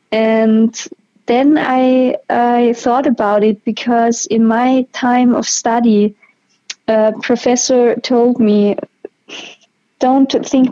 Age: 20-39